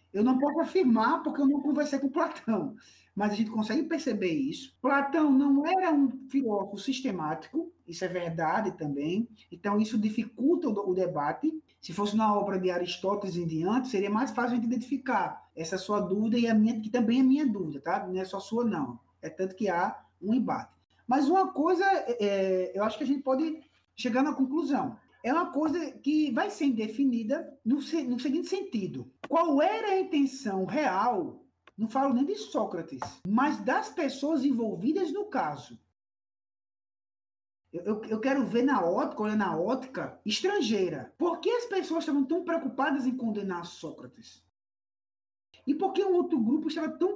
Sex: male